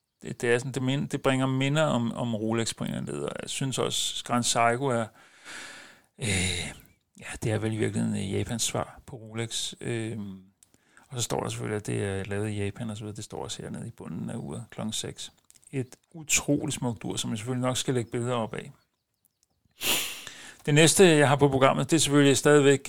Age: 60-79